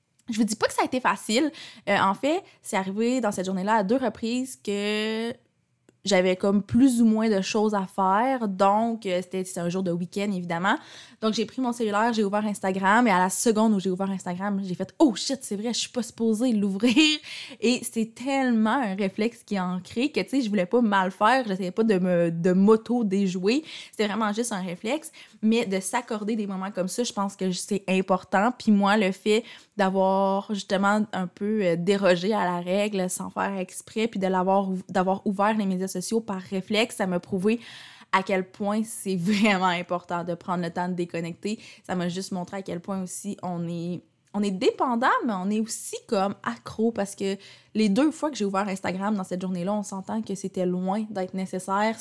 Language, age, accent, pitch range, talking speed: French, 20-39, Canadian, 185-220 Hz, 210 wpm